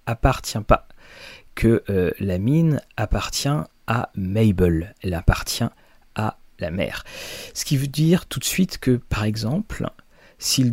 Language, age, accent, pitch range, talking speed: French, 40-59, French, 100-130 Hz, 140 wpm